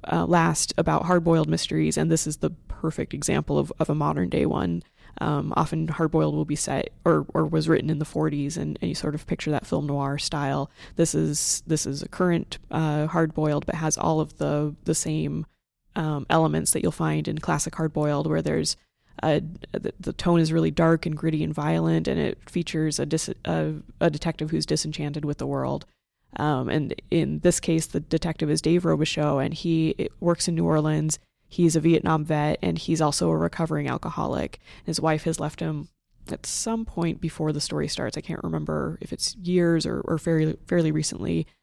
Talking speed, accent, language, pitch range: 200 wpm, American, English, 140-165 Hz